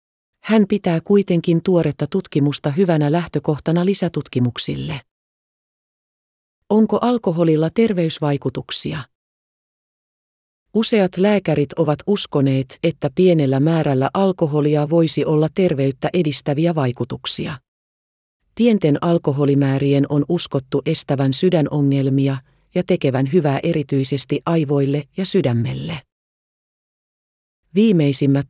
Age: 30-49